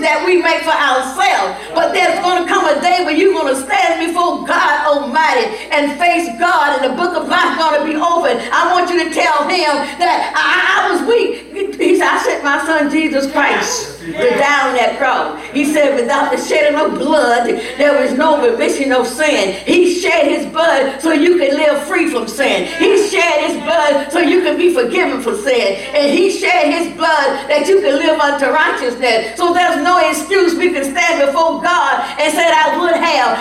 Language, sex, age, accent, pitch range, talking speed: English, female, 50-69, American, 300-375 Hz, 210 wpm